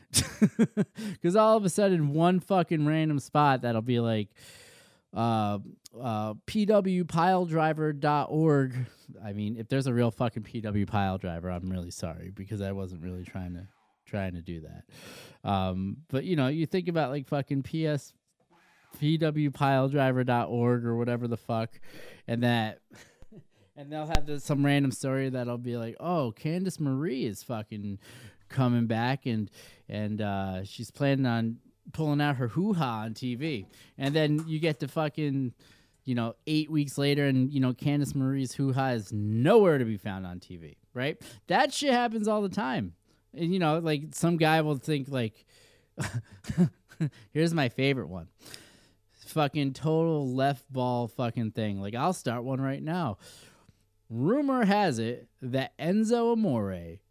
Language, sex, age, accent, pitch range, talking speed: English, male, 20-39, American, 110-155 Hz, 155 wpm